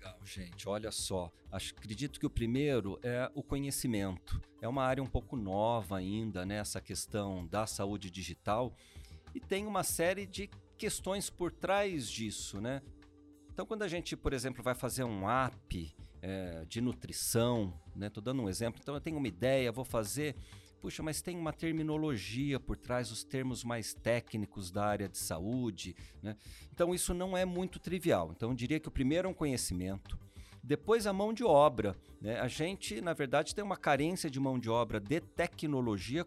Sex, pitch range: male, 95-145 Hz